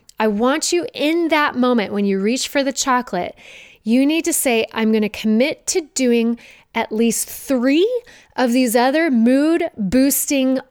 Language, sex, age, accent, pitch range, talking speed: English, female, 20-39, American, 215-275 Hz, 170 wpm